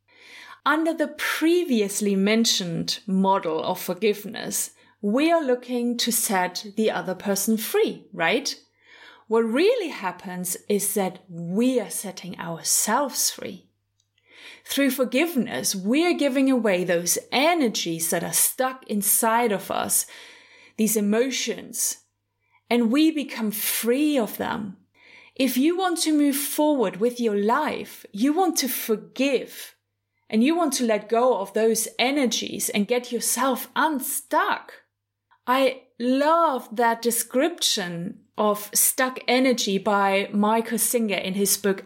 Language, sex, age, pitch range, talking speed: English, female, 30-49, 195-260 Hz, 125 wpm